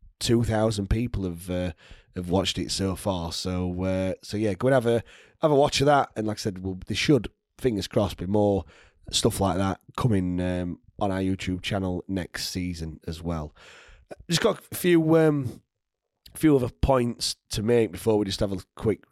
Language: English